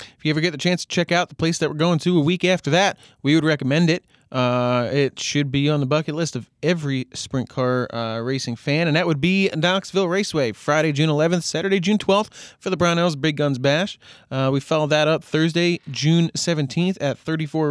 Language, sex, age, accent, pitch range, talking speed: English, male, 30-49, American, 135-180 Hz, 225 wpm